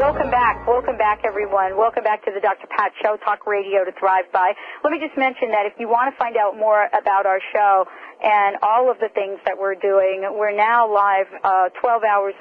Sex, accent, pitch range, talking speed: female, American, 190-225 Hz, 225 wpm